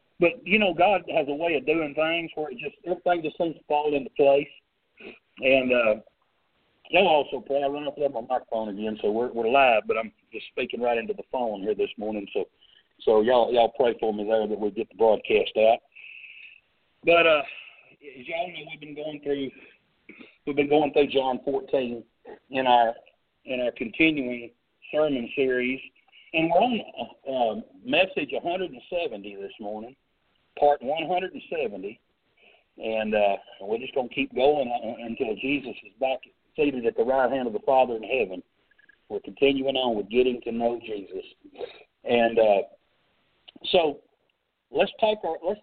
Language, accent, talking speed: English, American, 175 wpm